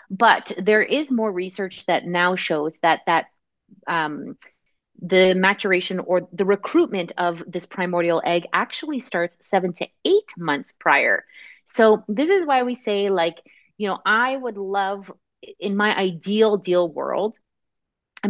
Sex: female